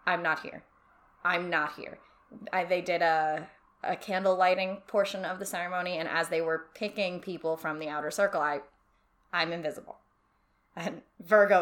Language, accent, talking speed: English, American, 165 wpm